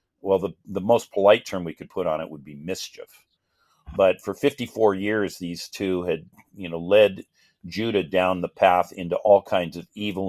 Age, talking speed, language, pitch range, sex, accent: 50-69, 190 wpm, English, 90-110 Hz, male, American